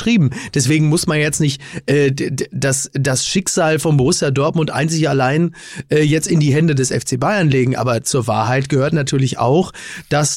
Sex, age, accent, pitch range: male, 30-49, German, 140-165 Hz